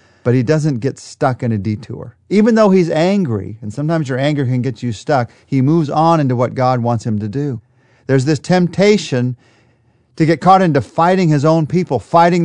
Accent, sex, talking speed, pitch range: American, male, 200 wpm, 115-150 Hz